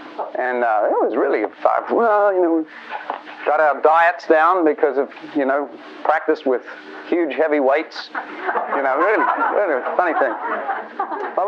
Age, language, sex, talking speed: 40-59, English, male, 155 wpm